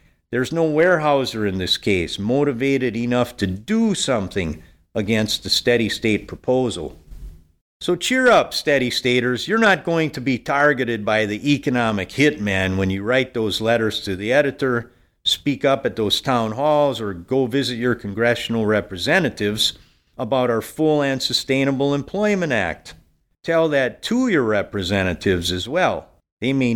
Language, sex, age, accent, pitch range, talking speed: English, male, 50-69, American, 105-145 Hz, 145 wpm